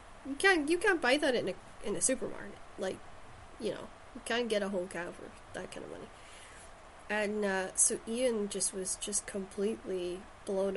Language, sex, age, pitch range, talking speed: English, female, 30-49, 185-220 Hz, 190 wpm